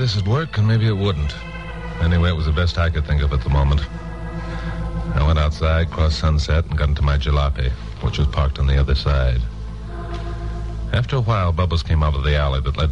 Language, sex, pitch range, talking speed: English, male, 70-95 Hz, 220 wpm